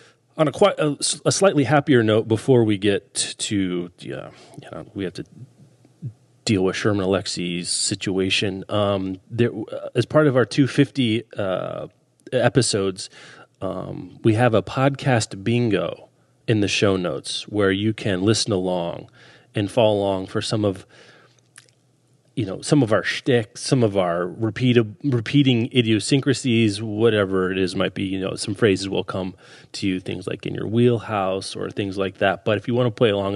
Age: 30-49